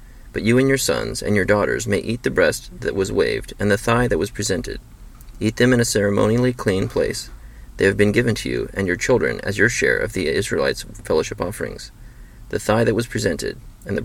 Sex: male